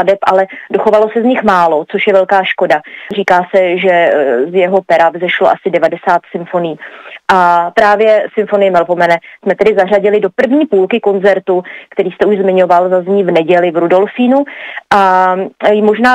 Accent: native